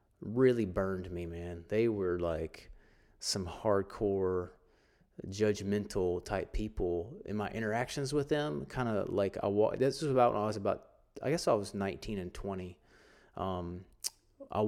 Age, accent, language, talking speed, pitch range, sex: 30-49, American, English, 150 wpm, 95-110 Hz, male